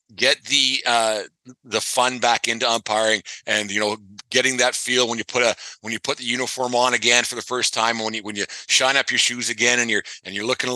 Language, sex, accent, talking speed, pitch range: English, male, American, 245 wpm, 115-125 Hz